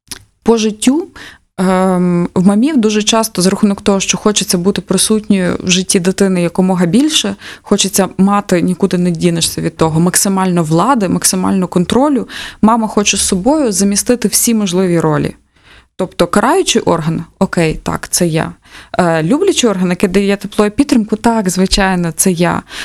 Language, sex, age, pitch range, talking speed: Ukrainian, female, 20-39, 185-215 Hz, 140 wpm